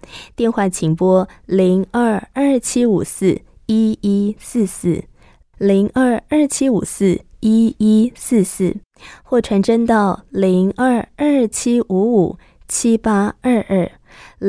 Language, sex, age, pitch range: Chinese, female, 20-39, 180-225 Hz